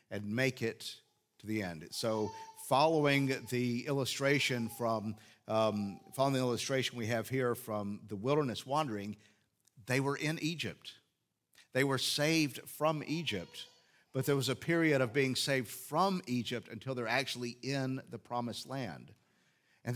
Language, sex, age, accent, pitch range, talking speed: English, male, 50-69, American, 110-140 Hz, 145 wpm